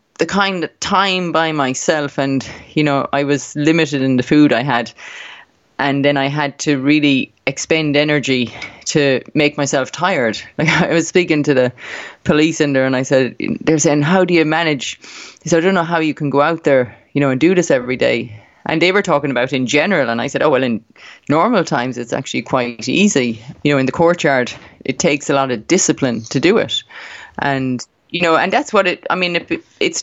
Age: 20-39